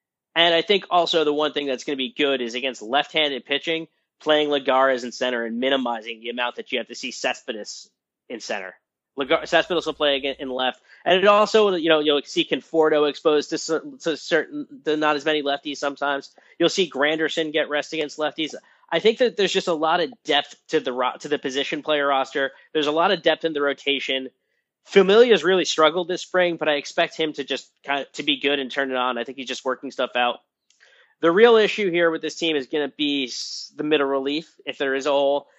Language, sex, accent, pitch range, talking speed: English, male, American, 135-165 Hz, 220 wpm